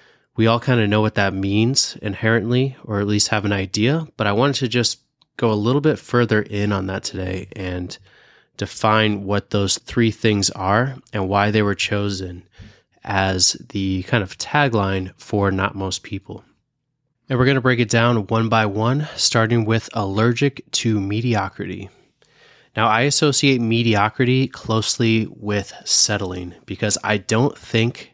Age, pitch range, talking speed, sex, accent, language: 20-39, 100-120 Hz, 160 wpm, male, American, English